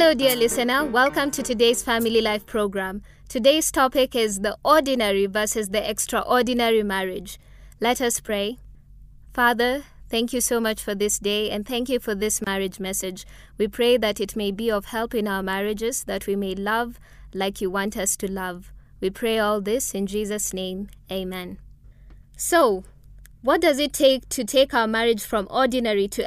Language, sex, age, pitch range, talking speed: English, female, 20-39, 205-255 Hz, 175 wpm